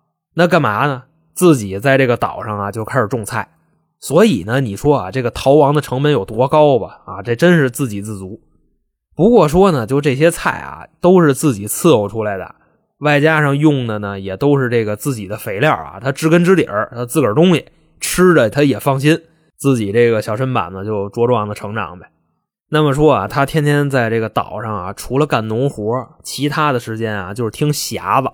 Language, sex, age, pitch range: Chinese, male, 20-39, 115-150 Hz